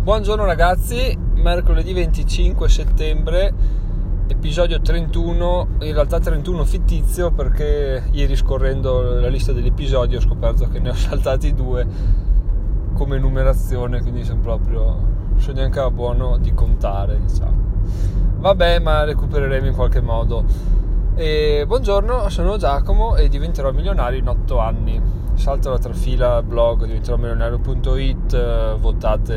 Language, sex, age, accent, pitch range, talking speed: Italian, male, 20-39, native, 95-130 Hz, 120 wpm